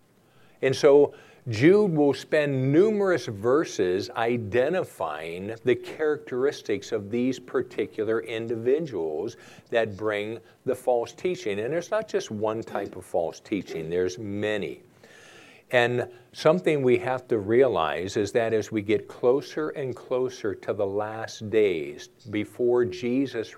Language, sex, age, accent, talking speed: English, male, 50-69, American, 125 wpm